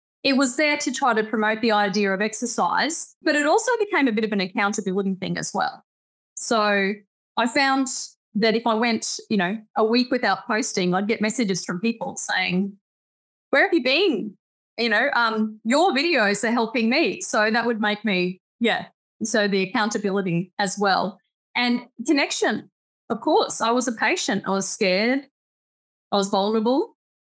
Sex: female